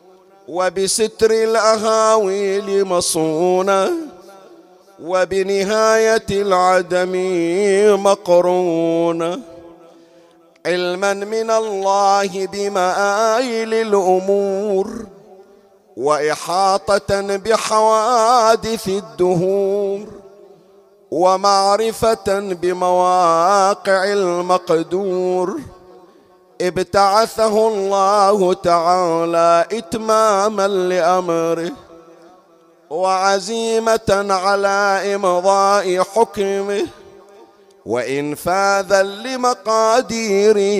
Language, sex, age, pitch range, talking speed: Arabic, male, 40-59, 180-200 Hz, 40 wpm